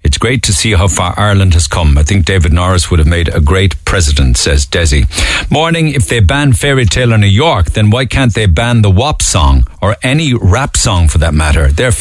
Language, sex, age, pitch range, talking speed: English, male, 50-69, 85-110 Hz, 225 wpm